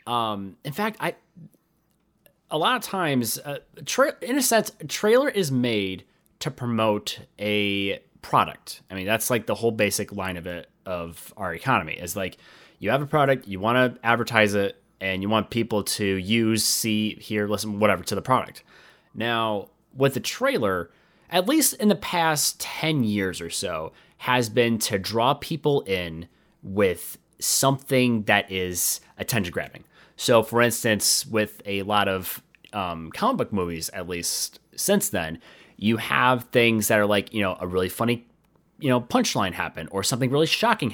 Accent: American